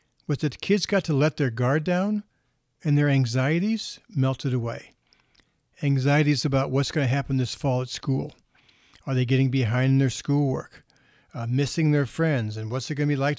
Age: 50-69